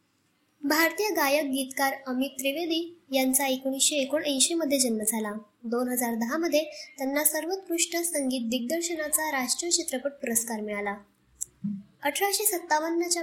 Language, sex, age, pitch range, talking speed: Marathi, male, 20-39, 245-300 Hz, 90 wpm